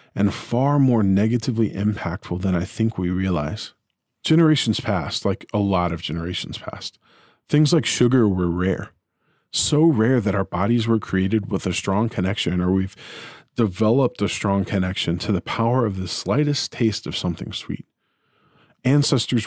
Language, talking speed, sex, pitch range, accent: English, 155 wpm, male, 100-130 Hz, American